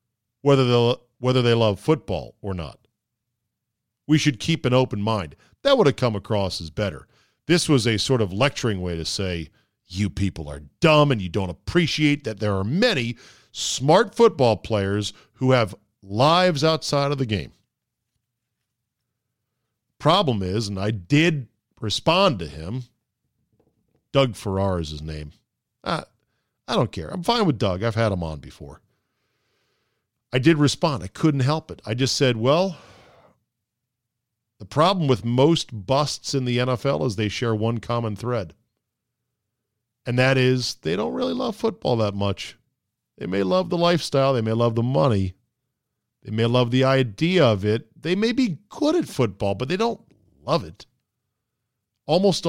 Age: 50-69